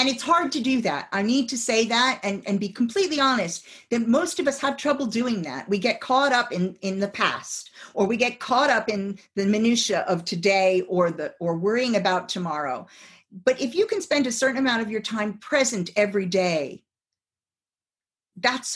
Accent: American